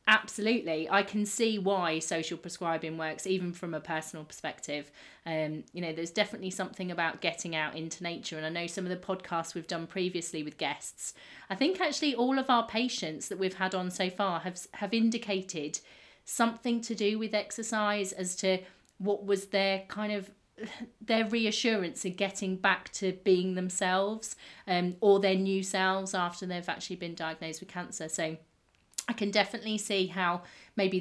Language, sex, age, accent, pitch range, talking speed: English, female, 30-49, British, 180-220 Hz, 175 wpm